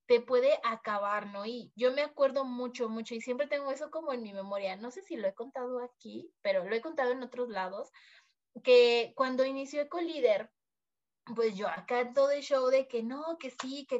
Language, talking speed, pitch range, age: Spanish, 210 wpm, 215-275 Hz, 20-39